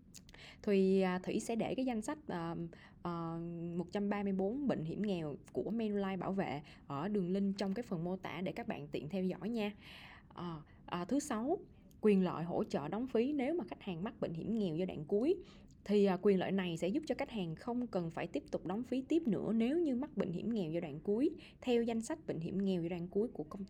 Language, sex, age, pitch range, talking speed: Vietnamese, female, 20-39, 175-220 Hz, 230 wpm